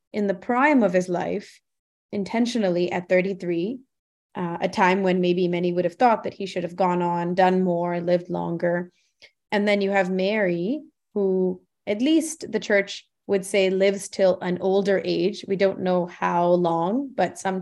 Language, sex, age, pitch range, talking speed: English, female, 20-39, 180-205 Hz, 175 wpm